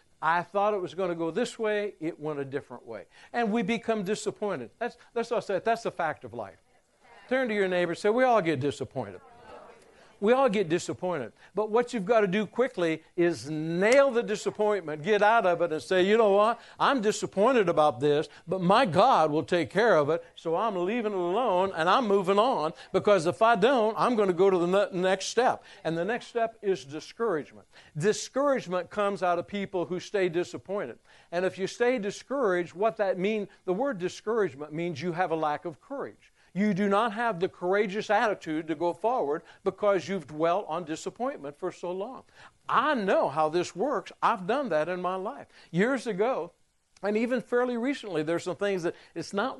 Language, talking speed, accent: English, 205 wpm, American